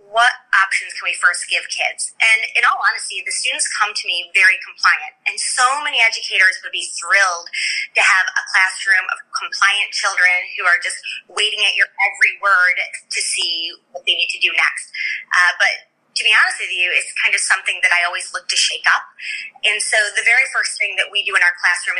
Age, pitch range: 20-39, 180-250 Hz